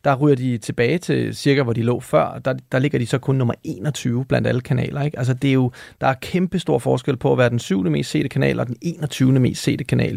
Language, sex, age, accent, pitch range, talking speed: Danish, male, 30-49, native, 125-160 Hz, 265 wpm